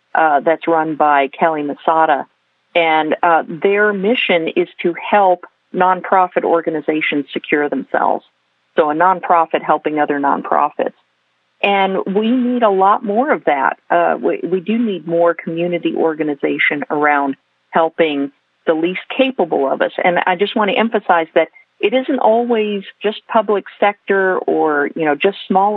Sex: female